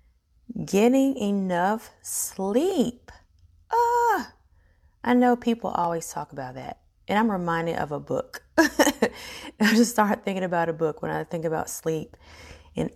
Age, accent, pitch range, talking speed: 30-49, American, 160-230 Hz, 145 wpm